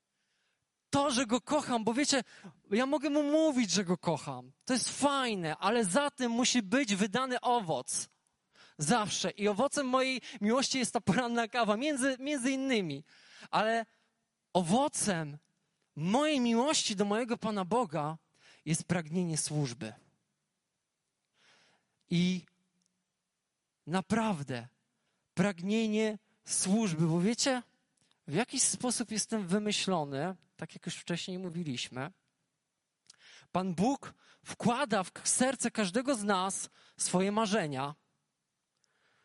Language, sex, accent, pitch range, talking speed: Polish, male, native, 170-240 Hz, 110 wpm